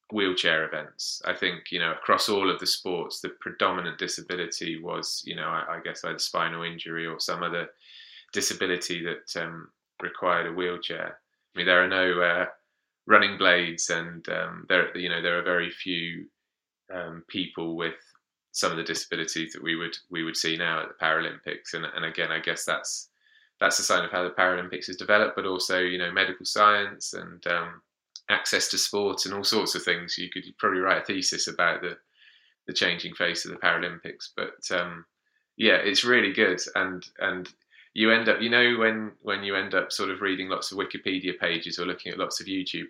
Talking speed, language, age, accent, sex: 200 wpm, English, 20-39, British, male